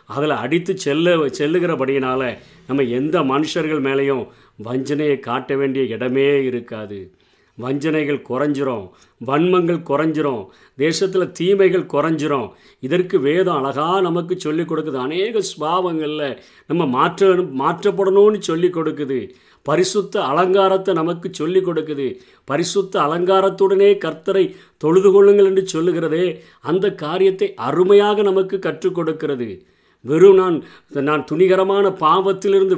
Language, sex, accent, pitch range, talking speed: Tamil, male, native, 150-200 Hz, 100 wpm